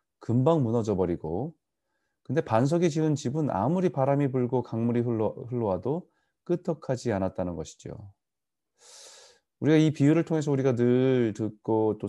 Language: Korean